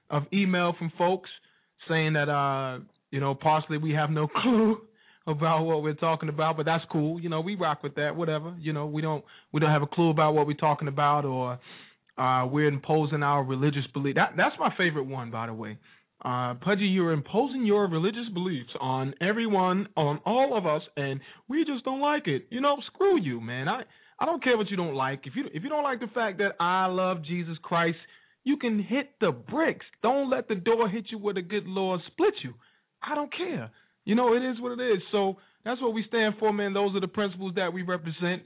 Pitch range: 155-220 Hz